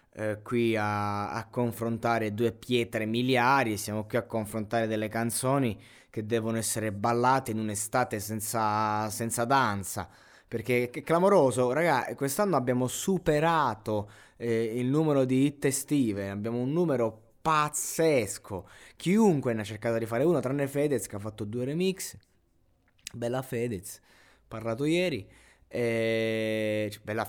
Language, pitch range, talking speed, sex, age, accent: Italian, 110-130 Hz, 125 wpm, male, 20-39, native